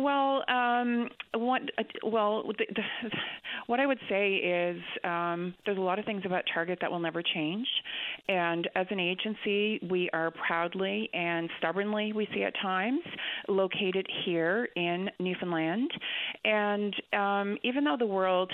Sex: female